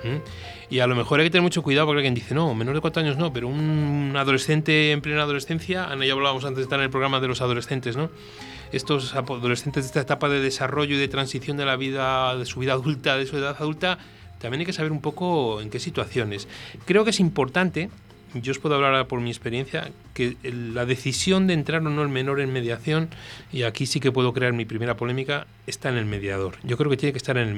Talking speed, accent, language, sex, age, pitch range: 240 wpm, Spanish, Spanish, male, 30-49, 115-140 Hz